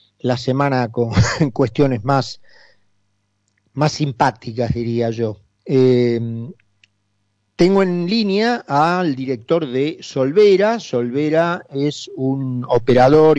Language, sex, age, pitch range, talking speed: Spanish, male, 40-59, 125-160 Hz, 100 wpm